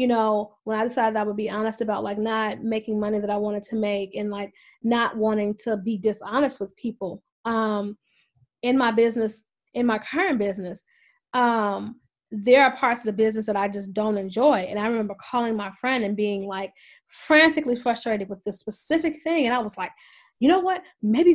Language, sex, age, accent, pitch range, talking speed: English, female, 20-39, American, 210-285 Hz, 200 wpm